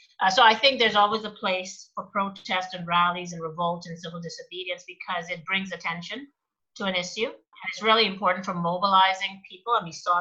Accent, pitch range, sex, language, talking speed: American, 170-210 Hz, female, English, 195 wpm